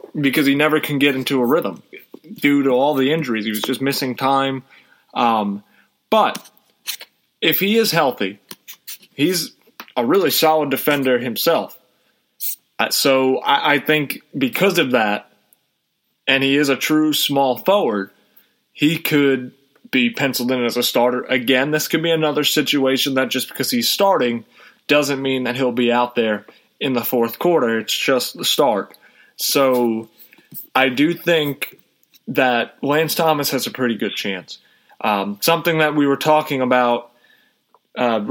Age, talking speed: 30-49, 155 wpm